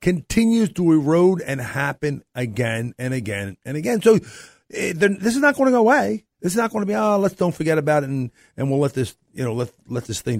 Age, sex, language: 50-69, male, English